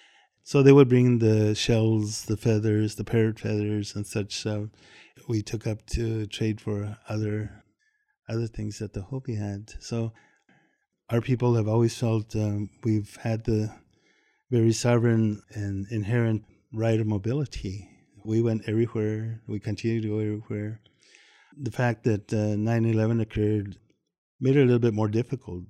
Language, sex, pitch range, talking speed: English, male, 105-115 Hz, 150 wpm